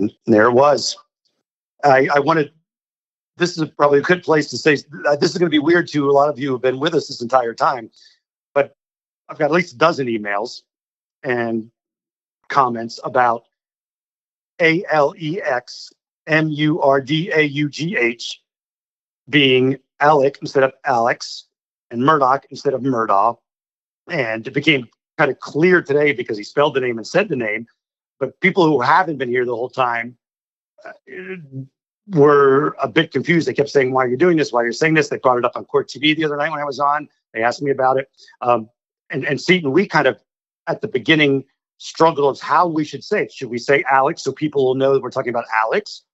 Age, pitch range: 40-59, 130-155 Hz